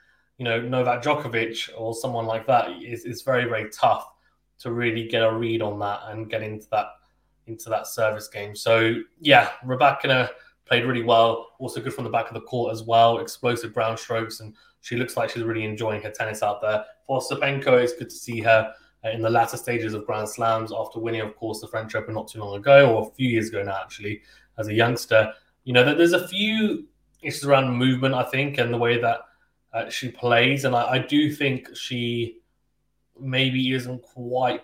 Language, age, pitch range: English, 20-39, 110-130 Hz